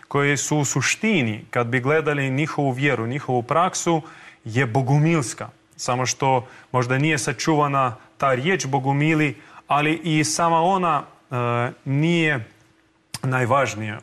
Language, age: Croatian, 30-49